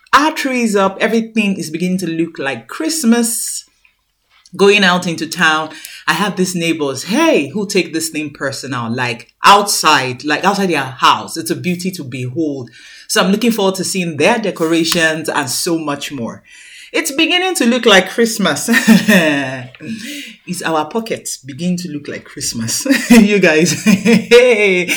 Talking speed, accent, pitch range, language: 155 wpm, Nigerian, 145-205 Hz, English